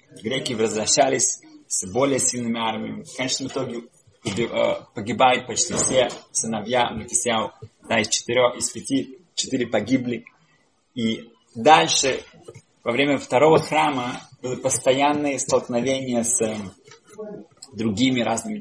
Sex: male